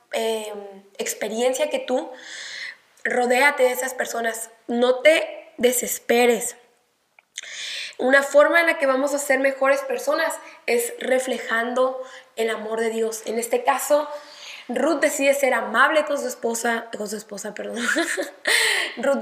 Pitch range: 235-295 Hz